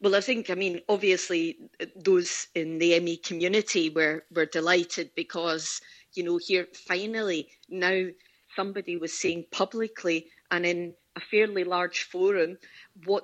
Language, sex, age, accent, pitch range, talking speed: English, female, 40-59, British, 185-235 Hz, 140 wpm